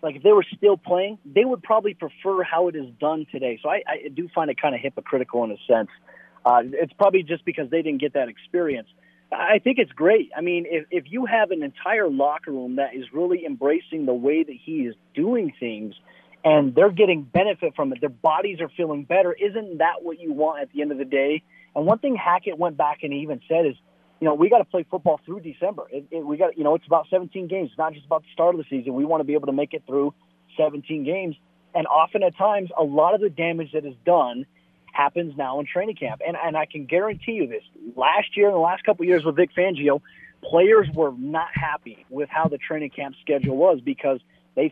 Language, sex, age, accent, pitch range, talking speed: English, male, 30-49, American, 145-180 Hz, 245 wpm